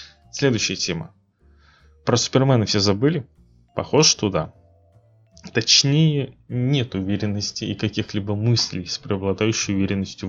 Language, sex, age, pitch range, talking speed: Russian, male, 20-39, 95-115 Hz, 105 wpm